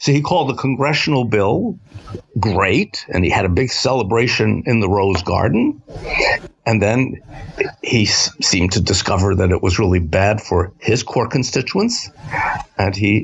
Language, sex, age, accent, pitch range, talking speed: English, male, 60-79, American, 95-125 Hz, 155 wpm